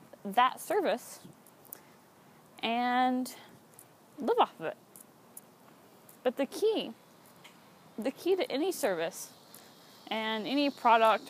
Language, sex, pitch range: English, female, 230-315 Hz